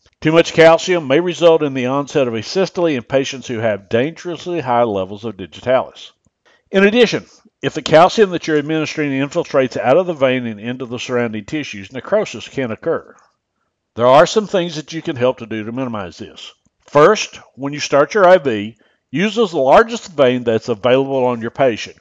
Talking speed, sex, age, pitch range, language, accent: 190 wpm, male, 60-79, 110-160 Hz, English, American